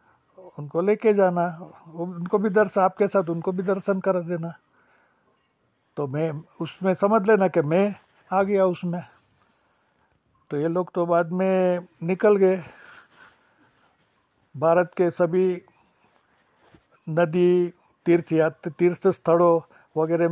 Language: Hindi